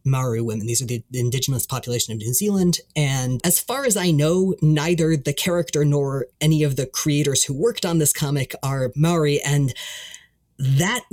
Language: English